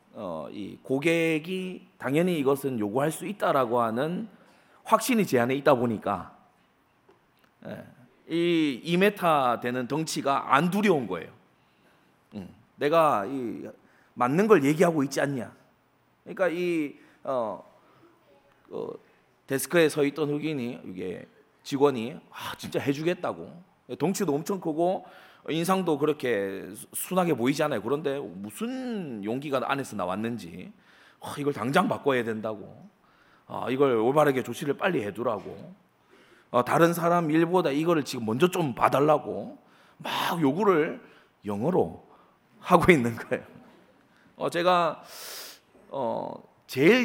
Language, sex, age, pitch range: Korean, male, 30-49, 125-175 Hz